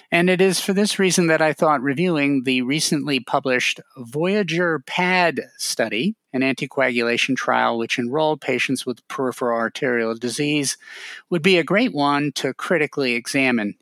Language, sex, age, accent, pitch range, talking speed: English, male, 50-69, American, 125-175 Hz, 150 wpm